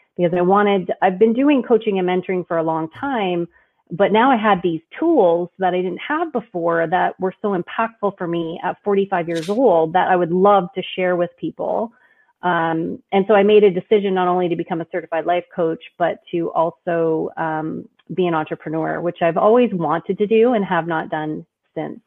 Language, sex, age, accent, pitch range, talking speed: English, female, 30-49, American, 165-195 Hz, 205 wpm